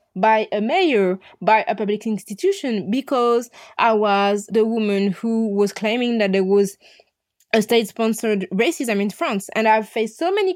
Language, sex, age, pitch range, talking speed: English, female, 20-39, 200-245 Hz, 170 wpm